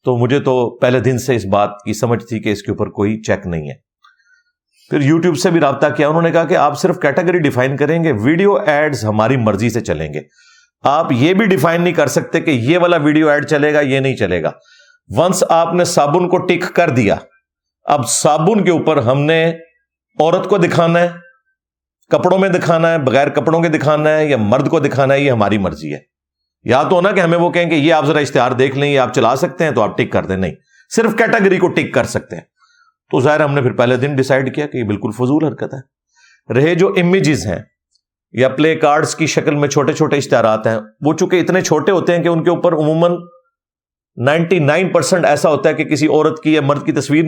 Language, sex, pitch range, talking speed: Urdu, male, 125-170 Hz, 210 wpm